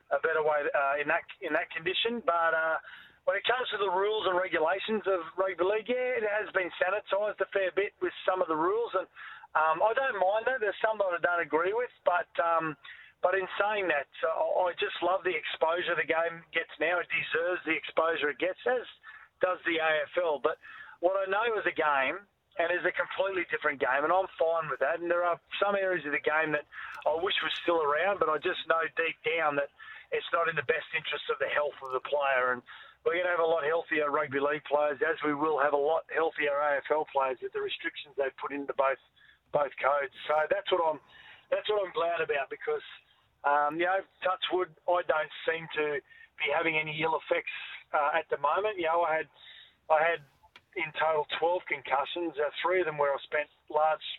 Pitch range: 155-200 Hz